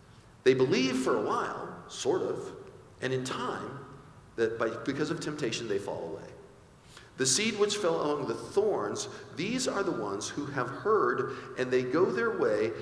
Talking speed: 175 wpm